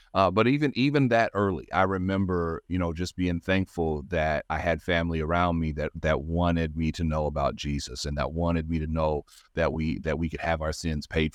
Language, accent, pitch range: English, American, 80-90 Hz